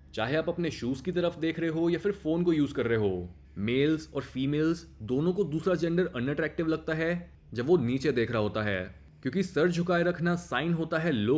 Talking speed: 220 wpm